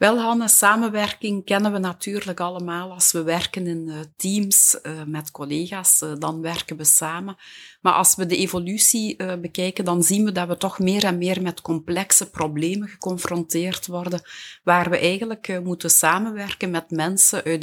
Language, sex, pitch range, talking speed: Dutch, female, 165-190 Hz, 155 wpm